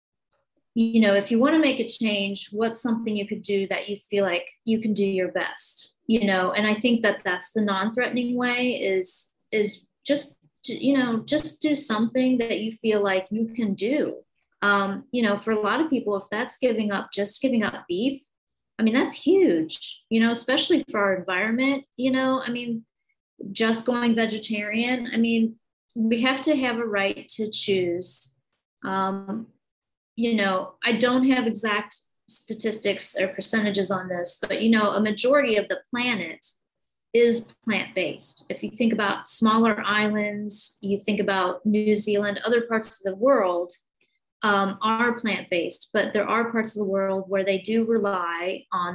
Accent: American